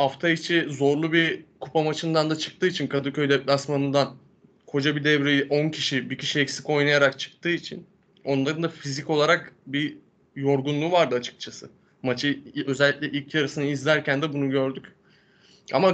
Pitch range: 145-175 Hz